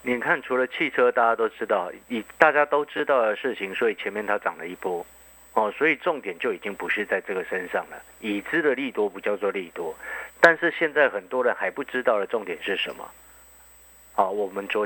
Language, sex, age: Chinese, male, 50-69